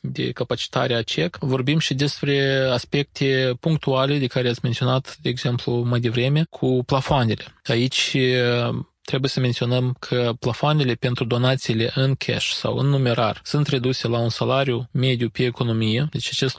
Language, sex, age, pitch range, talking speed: Romanian, male, 20-39, 120-140 Hz, 150 wpm